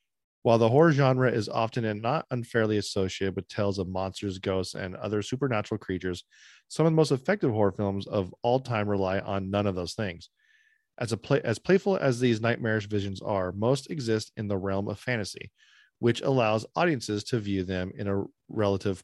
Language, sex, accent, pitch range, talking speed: English, male, American, 100-130 Hz, 190 wpm